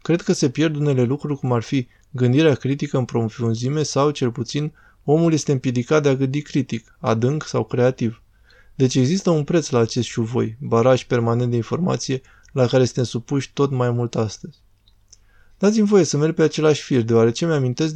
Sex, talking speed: male, 185 wpm